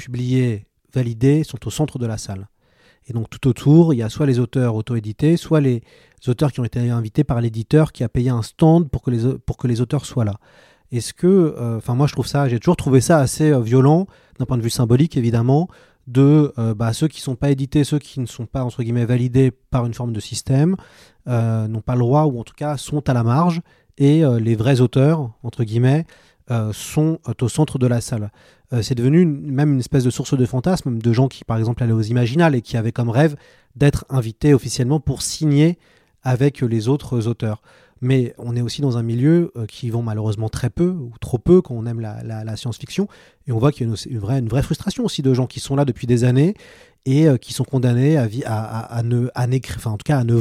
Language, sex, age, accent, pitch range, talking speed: French, male, 30-49, French, 115-145 Hz, 225 wpm